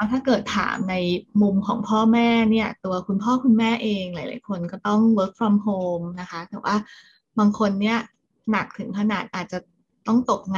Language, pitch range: Thai, 195-225 Hz